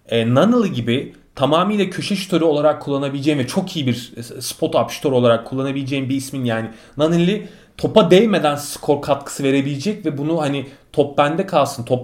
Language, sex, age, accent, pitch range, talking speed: Turkish, male, 30-49, native, 125-160 Hz, 160 wpm